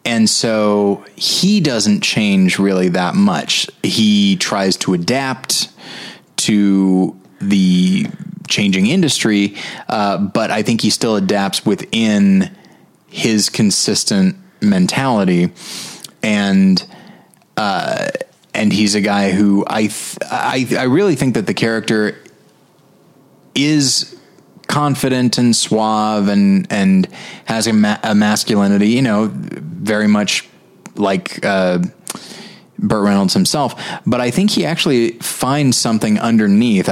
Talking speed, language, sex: 115 wpm, English, male